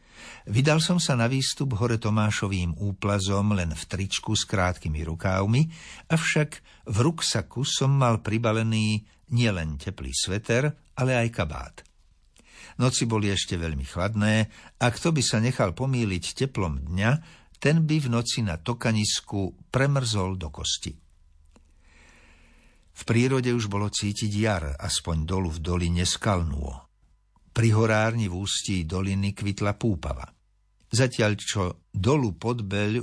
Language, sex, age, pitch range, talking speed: Slovak, male, 60-79, 90-120 Hz, 125 wpm